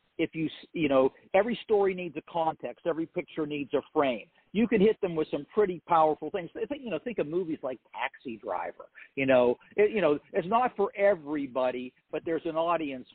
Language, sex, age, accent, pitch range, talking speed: English, male, 50-69, American, 135-180 Hz, 200 wpm